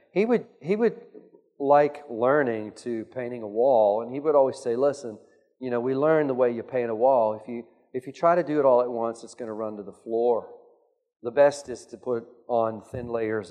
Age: 40-59